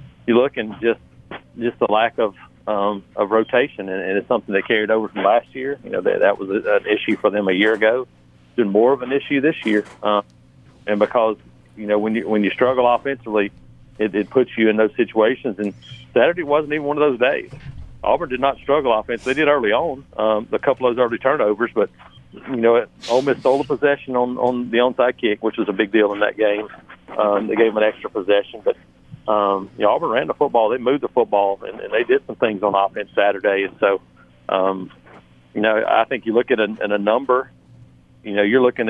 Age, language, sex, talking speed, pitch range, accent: 40-59, English, male, 230 wpm, 100-125 Hz, American